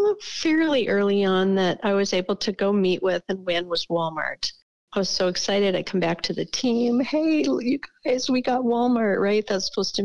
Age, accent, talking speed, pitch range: 50-69, American, 210 wpm, 180-240 Hz